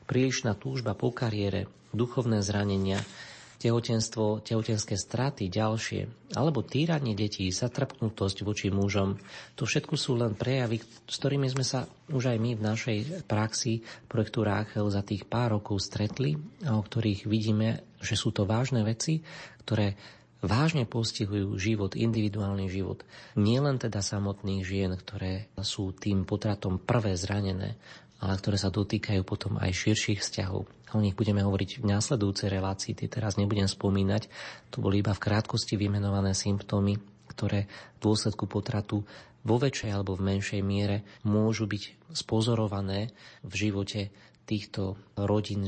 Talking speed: 140 wpm